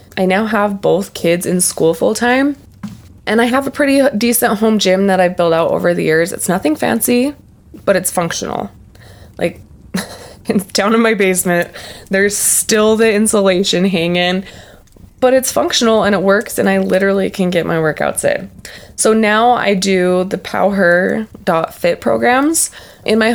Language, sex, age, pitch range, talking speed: English, female, 20-39, 175-220 Hz, 160 wpm